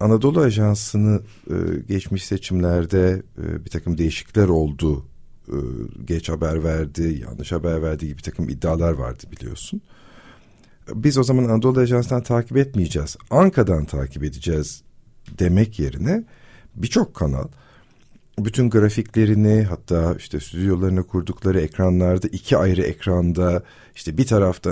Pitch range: 80-110 Hz